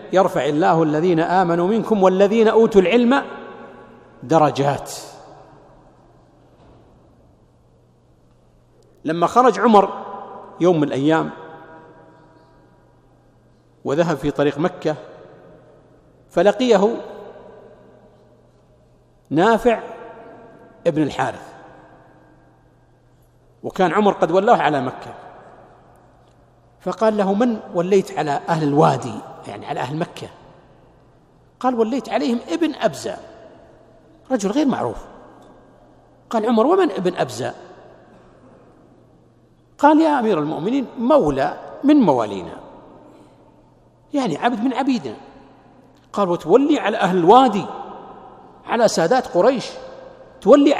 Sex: male